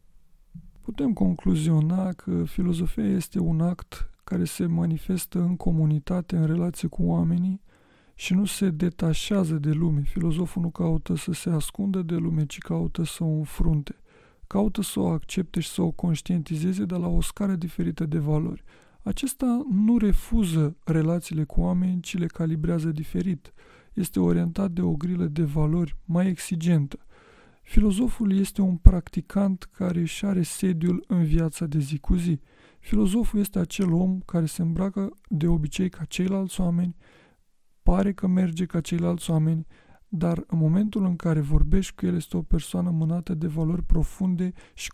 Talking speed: 155 wpm